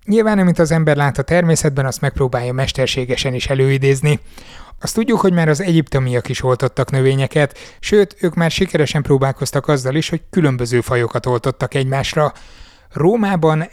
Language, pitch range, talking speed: Hungarian, 125-155 Hz, 150 wpm